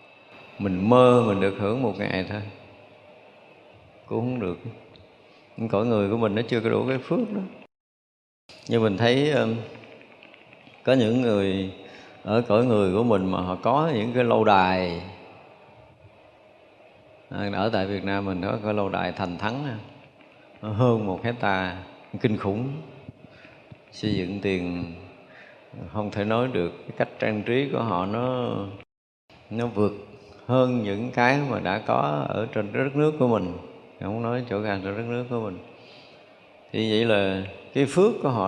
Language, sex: Vietnamese, male